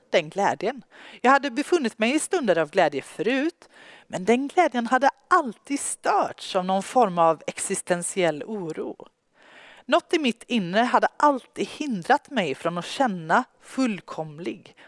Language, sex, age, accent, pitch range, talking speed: Swedish, female, 40-59, native, 180-265 Hz, 140 wpm